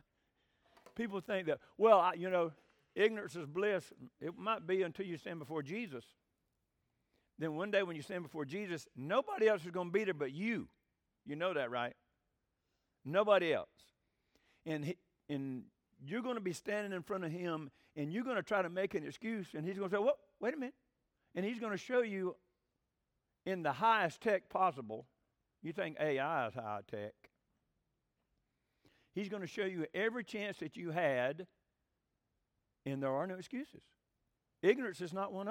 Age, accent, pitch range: 50-69, American, 155-225 Hz